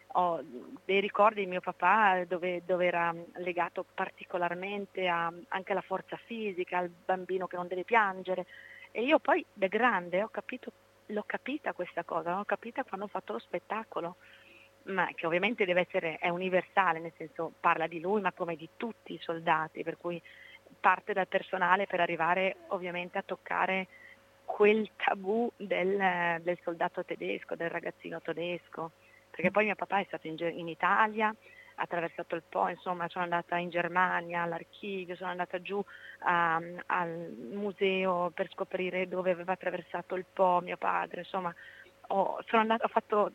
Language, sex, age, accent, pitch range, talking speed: Italian, female, 30-49, native, 175-210 Hz, 160 wpm